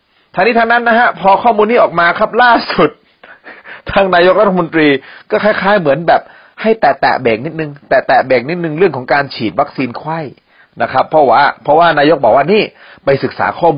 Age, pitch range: 30-49, 130-185 Hz